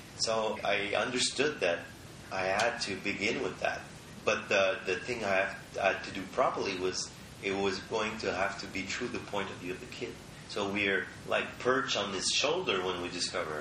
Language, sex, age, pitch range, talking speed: English, male, 30-49, 95-120 Hz, 205 wpm